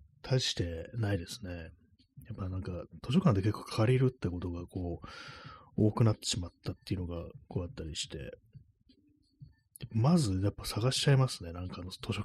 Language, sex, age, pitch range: Japanese, male, 30-49, 90-120 Hz